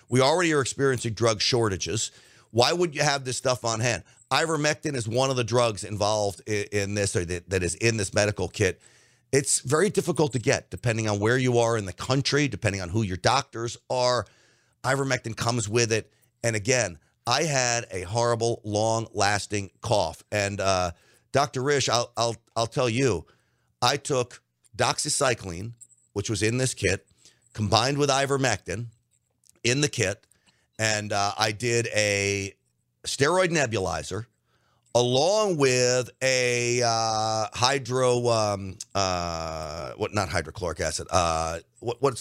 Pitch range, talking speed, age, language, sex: 105-135 Hz, 150 wpm, 50-69, English, male